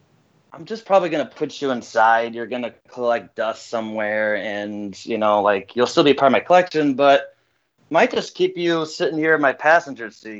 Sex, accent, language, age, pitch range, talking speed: male, American, English, 20-39, 115-145 Hz, 195 wpm